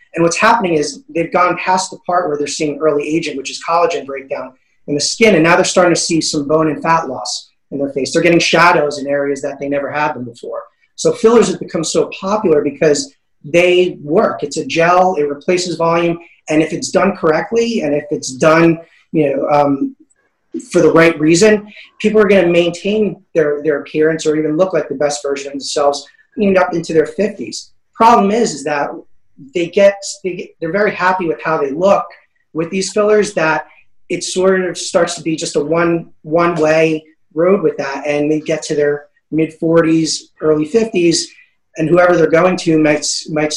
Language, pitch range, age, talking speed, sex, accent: English, 150-185 Hz, 30-49, 200 wpm, male, American